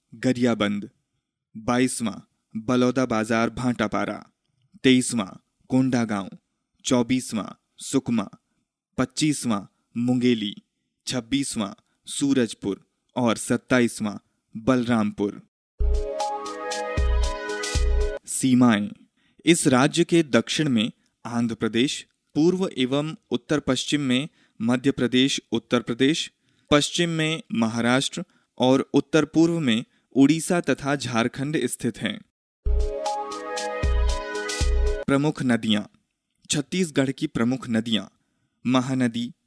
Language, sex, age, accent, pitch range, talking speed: Hindi, male, 20-39, native, 110-140 Hz, 80 wpm